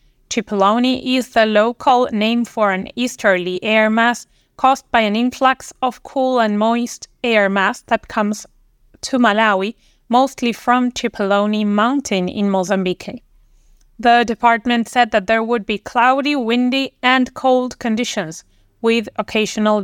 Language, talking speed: English, 135 wpm